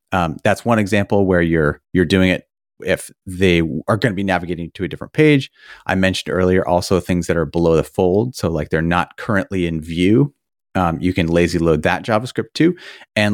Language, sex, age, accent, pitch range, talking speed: English, male, 30-49, American, 90-115 Hz, 205 wpm